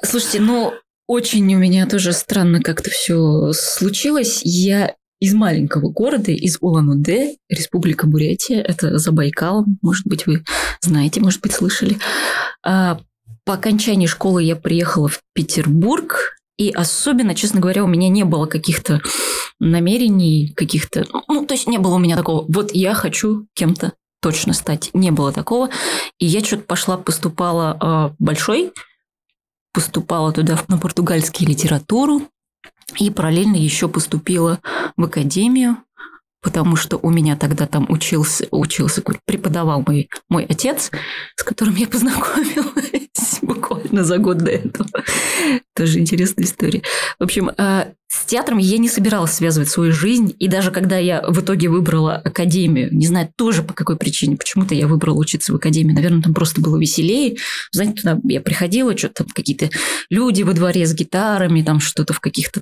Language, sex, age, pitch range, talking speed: Russian, female, 20-39, 160-210 Hz, 150 wpm